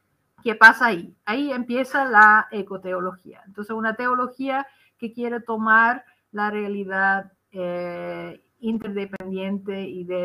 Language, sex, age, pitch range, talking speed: Spanish, female, 50-69, 195-250 Hz, 110 wpm